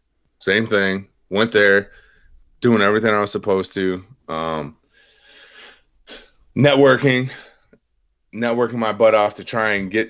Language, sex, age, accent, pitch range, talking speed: English, male, 30-49, American, 70-95 Hz, 120 wpm